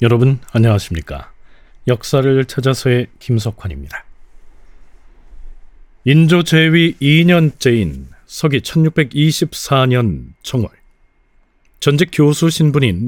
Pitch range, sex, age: 110-155 Hz, male, 40-59